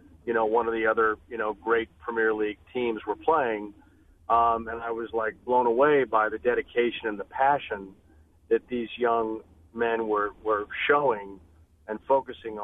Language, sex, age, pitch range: English, male, 40-59, 95-115 Hz